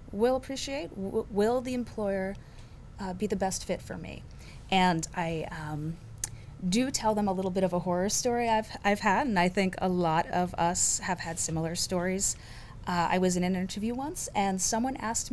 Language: English